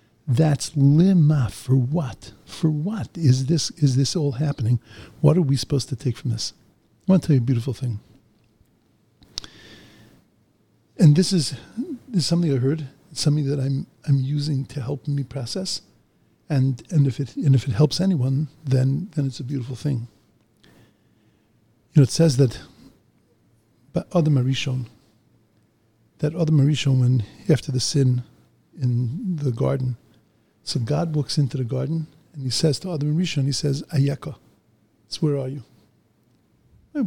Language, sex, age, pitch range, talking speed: English, male, 50-69, 115-150 Hz, 160 wpm